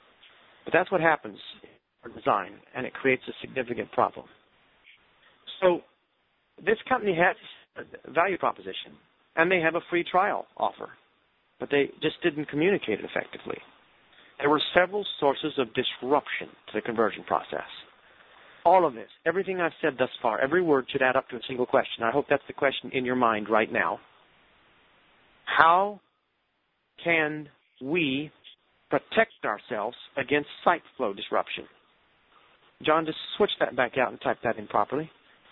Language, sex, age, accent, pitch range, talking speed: English, male, 40-59, American, 130-180 Hz, 155 wpm